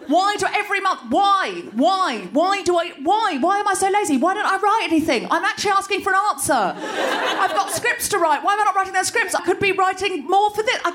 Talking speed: 250 wpm